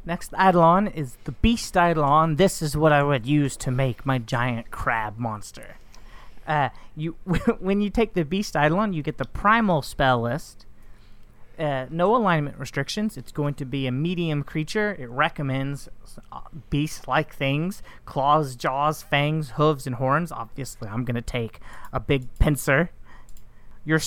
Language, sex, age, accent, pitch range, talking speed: English, male, 30-49, American, 130-170 Hz, 155 wpm